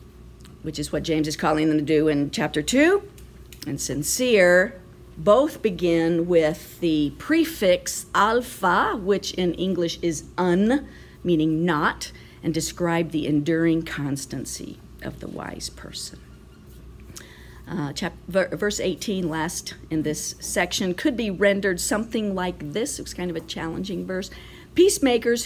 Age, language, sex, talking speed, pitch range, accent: 50-69, English, female, 130 wpm, 155-195 Hz, American